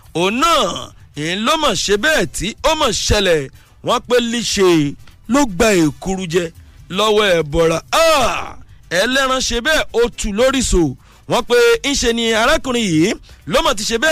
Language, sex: English, male